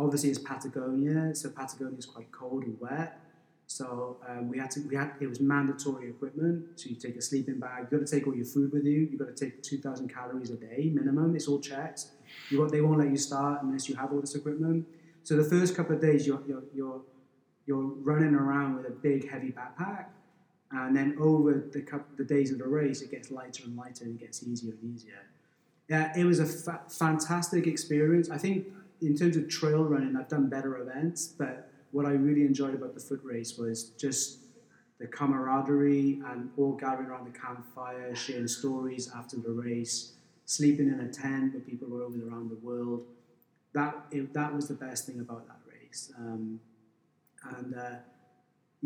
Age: 20-39